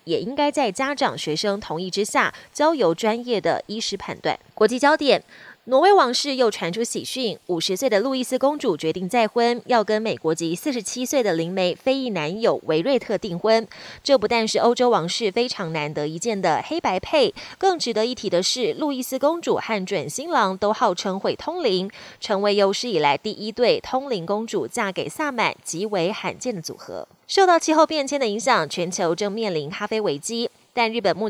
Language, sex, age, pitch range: Chinese, female, 20-39, 185-255 Hz